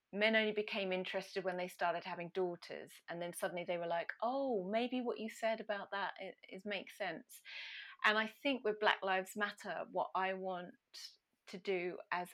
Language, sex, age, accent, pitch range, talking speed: English, female, 30-49, British, 185-225 Hz, 185 wpm